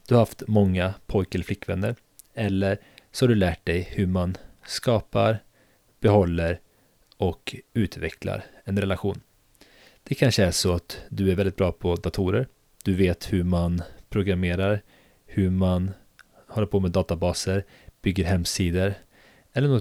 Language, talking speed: Swedish, 140 wpm